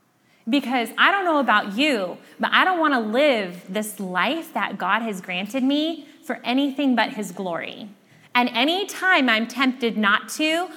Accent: American